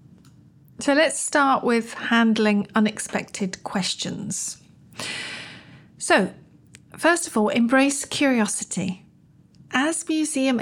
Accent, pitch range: British, 195-260 Hz